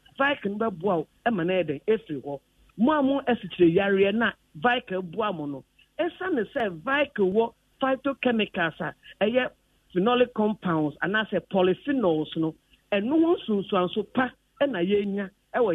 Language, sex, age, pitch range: English, male, 50-69, 185-255 Hz